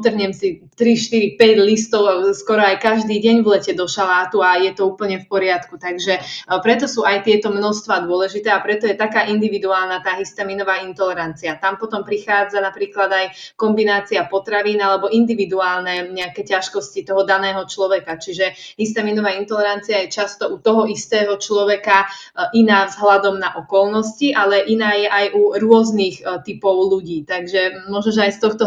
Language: Slovak